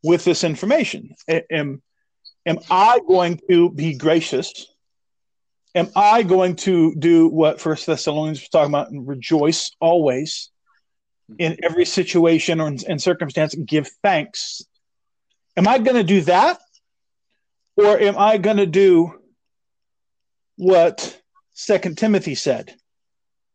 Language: English